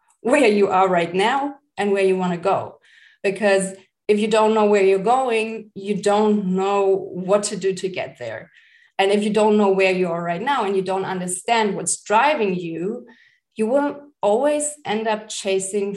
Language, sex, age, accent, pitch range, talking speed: English, female, 20-39, German, 185-220 Hz, 190 wpm